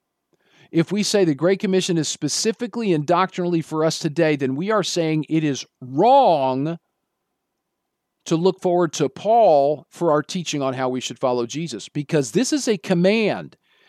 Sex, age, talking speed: male, 50-69, 170 wpm